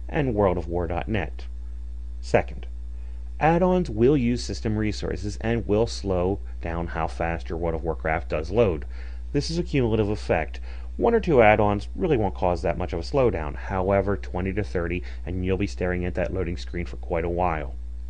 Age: 30-49